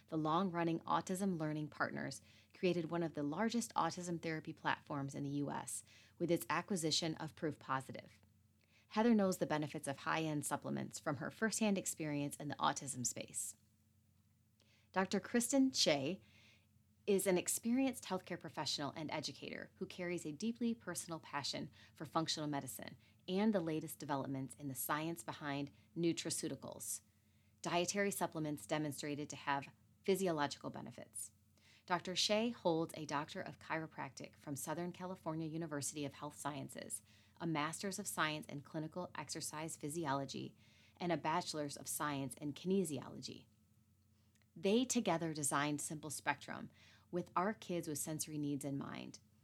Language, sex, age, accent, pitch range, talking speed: English, female, 30-49, American, 135-175 Hz, 140 wpm